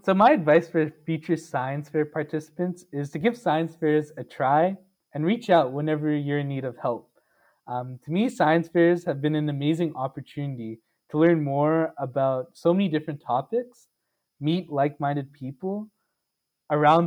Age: 20-39